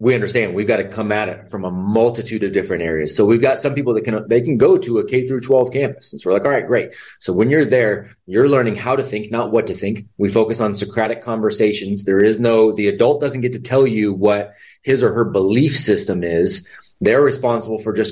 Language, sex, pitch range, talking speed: English, male, 105-130 Hz, 250 wpm